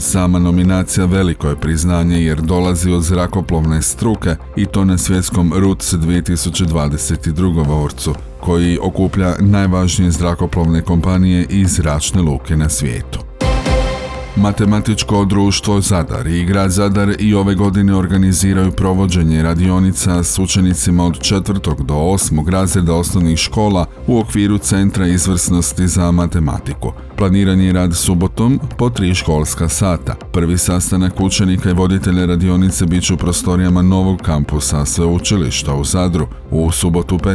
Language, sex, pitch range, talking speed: Croatian, male, 85-95 Hz, 125 wpm